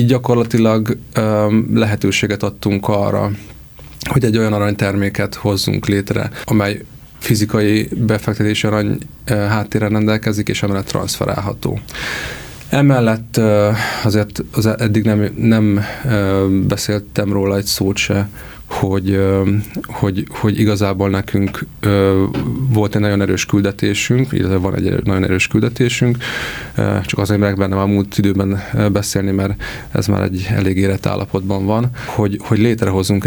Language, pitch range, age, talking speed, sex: Hungarian, 100-110 Hz, 30-49, 115 wpm, male